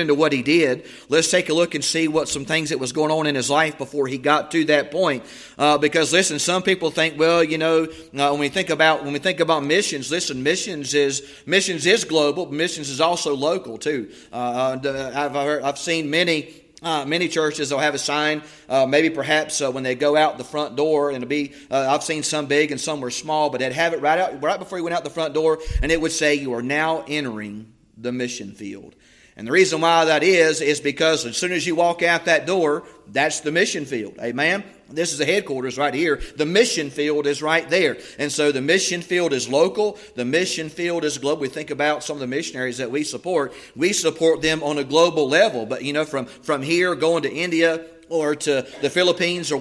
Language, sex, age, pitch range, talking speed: English, male, 30-49, 145-165 Hz, 235 wpm